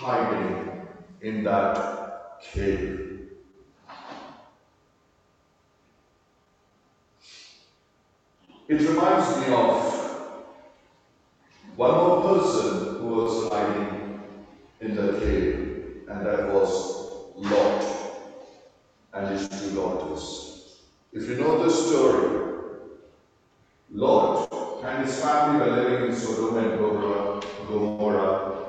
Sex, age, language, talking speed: male, 50-69, English, 85 wpm